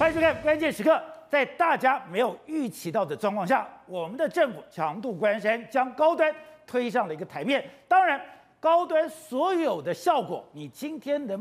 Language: Chinese